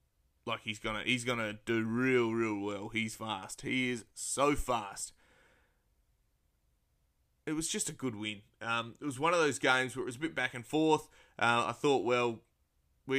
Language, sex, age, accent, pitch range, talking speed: English, male, 20-39, Australian, 110-130 Hz, 190 wpm